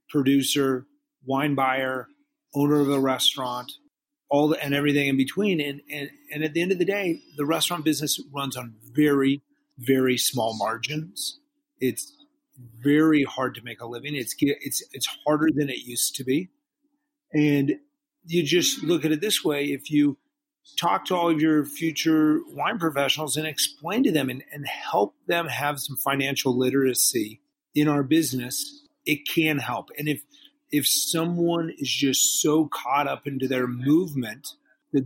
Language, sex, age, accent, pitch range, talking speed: English, male, 40-59, American, 135-170 Hz, 165 wpm